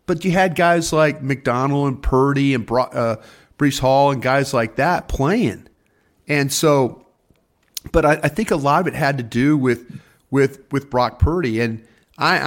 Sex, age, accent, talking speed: male, 40-59, American, 185 wpm